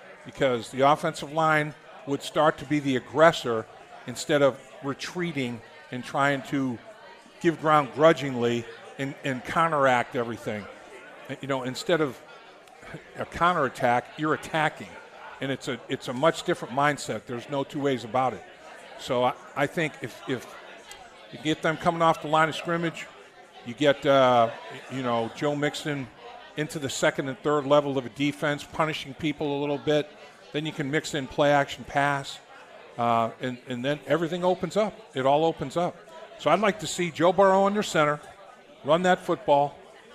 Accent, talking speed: American, 170 wpm